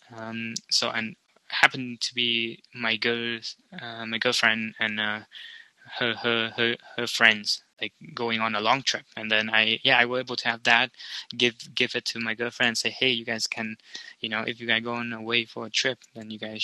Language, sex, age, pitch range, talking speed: English, male, 20-39, 110-125 Hz, 215 wpm